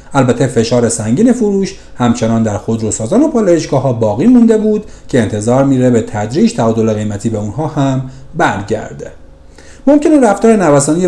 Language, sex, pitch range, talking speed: Persian, male, 115-175 Hz, 145 wpm